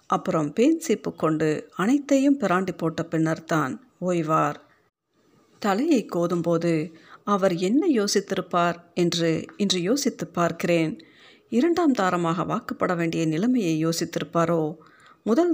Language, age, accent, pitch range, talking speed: Tamil, 50-69, native, 165-210 Hz, 100 wpm